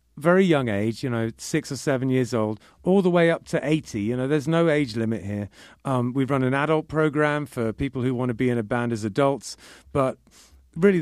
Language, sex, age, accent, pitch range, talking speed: English, male, 40-59, British, 110-145 Hz, 230 wpm